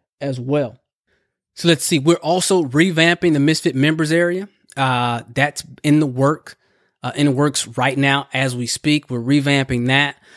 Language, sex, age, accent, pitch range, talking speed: English, male, 20-39, American, 130-155 Hz, 170 wpm